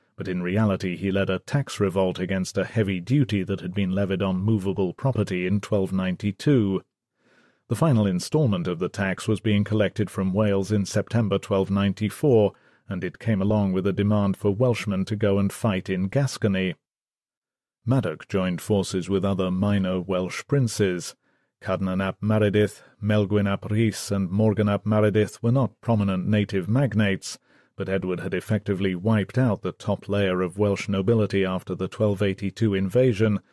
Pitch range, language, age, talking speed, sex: 95-110 Hz, English, 40-59, 155 wpm, male